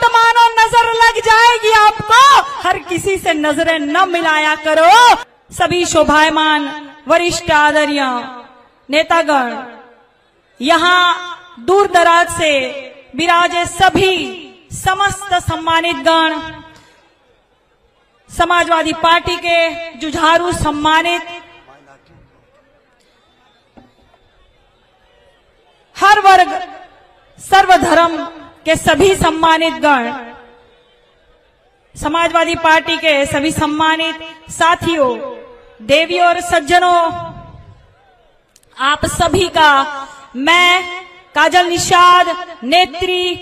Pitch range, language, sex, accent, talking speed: 325-385 Hz, Hindi, female, native, 70 wpm